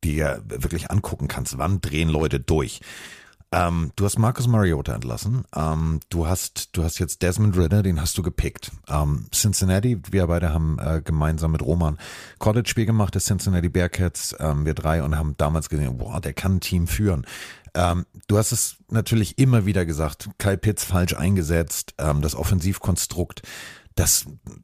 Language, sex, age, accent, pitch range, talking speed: German, male, 40-59, German, 80-105 Hz, 170 wpm